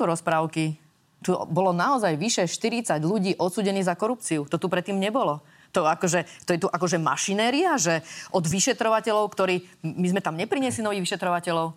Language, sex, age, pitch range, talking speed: Slovak, female, 30-49, 165-210 Hz, 160 wpm